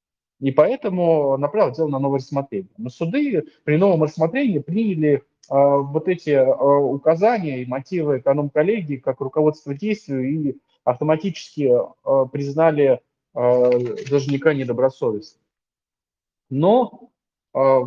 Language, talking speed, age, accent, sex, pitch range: Russian, 110 wpm, 20-39, native, male, 125-160 Hz